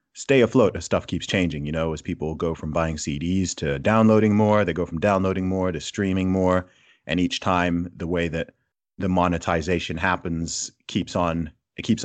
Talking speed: 190 wpm